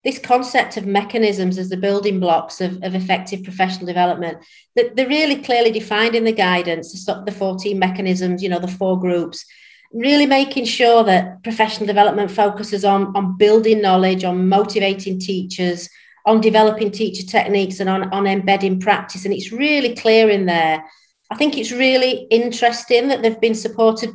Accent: British